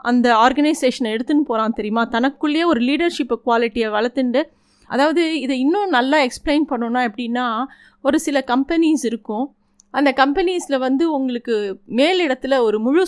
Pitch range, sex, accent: 230-285 Hz, female, native